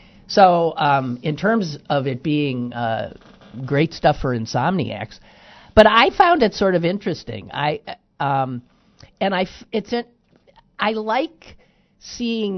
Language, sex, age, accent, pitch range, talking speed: English, male, 50-69, American, 140-195 Hz, 110 wpm